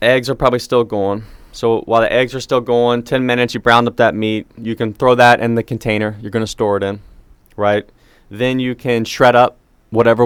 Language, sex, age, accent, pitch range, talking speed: English, male, 30-49, American, 105-125 Hz, 230 wpm